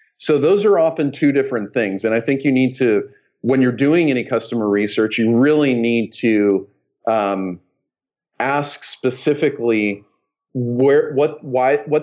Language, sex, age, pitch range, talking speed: English, male, 40-59, 115-145 Hz, 150 wpm